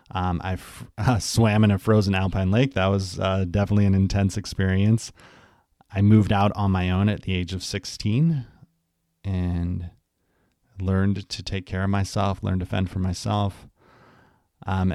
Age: 30-49